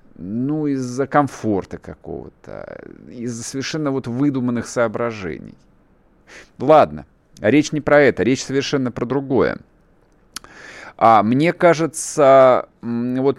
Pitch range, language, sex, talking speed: 105-140 Hz, Russian, male, 100 wpm